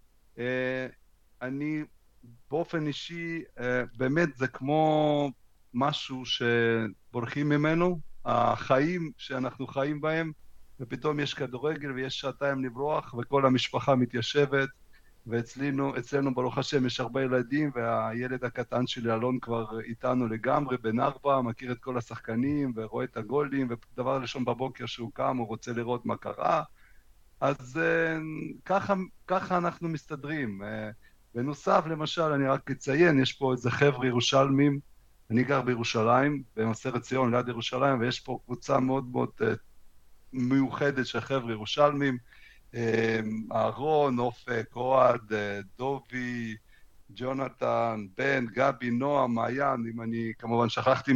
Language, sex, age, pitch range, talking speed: Hebrew, male, 60-79, 120-140 Hz, 120 wpm